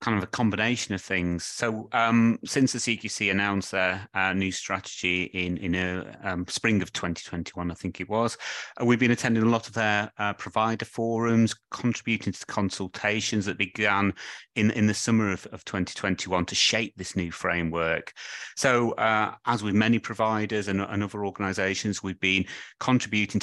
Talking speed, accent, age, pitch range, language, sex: 175 wpm, British, 30-49, 95-115 Hz, English, male